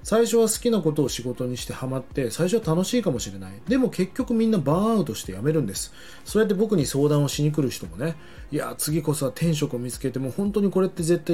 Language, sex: Japanese, male